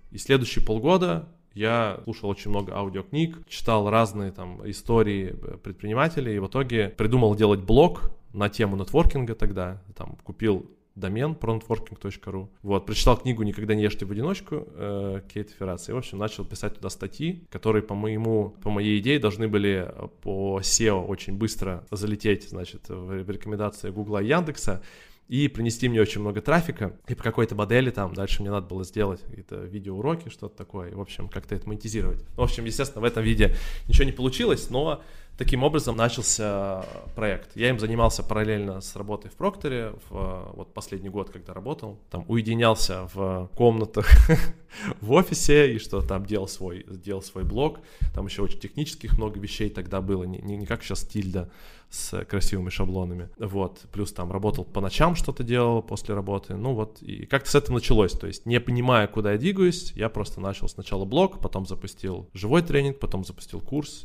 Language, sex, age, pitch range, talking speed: Russian, male, 20-39, 95-115 Hz, 170 wpm